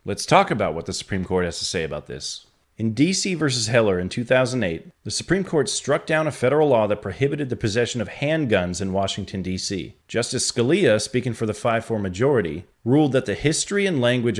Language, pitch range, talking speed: English, 100-140 Hz, 200 wpm